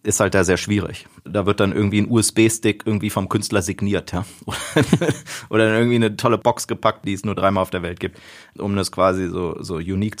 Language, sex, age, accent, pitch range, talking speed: German, male, 30-49, German, 100-120 Hz, 210 wpm